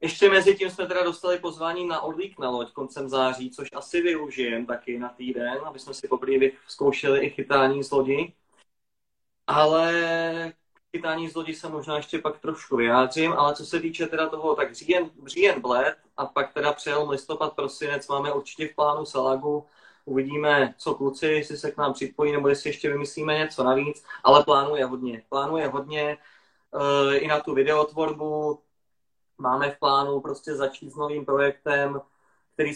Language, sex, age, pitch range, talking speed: Slovak, male, 20-39, 135-160 Hz, 170 wpm